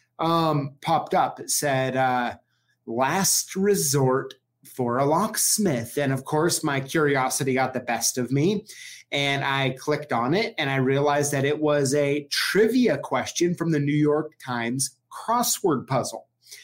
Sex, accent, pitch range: male, American, 130-175 Hz